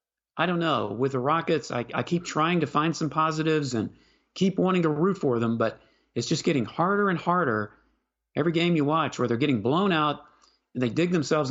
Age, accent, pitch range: 40-59, American, 135-190 Hz